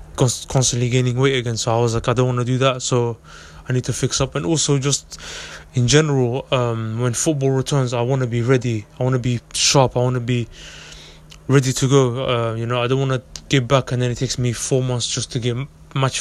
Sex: male